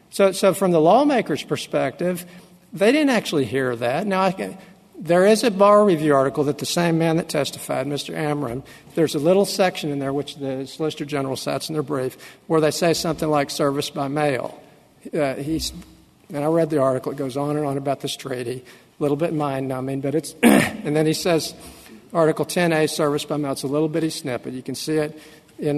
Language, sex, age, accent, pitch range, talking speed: English, male, 50-69, American, 140-175 Hz, 210 wpm